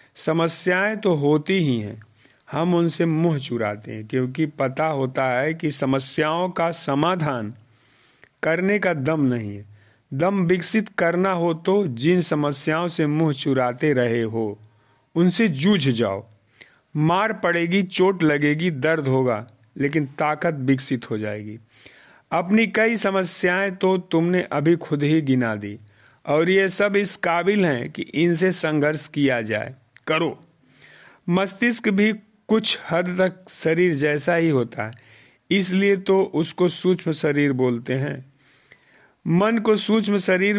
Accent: native